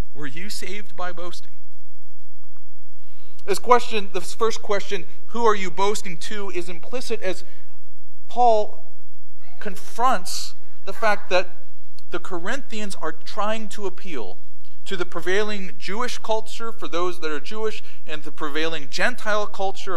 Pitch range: 165-215 Hz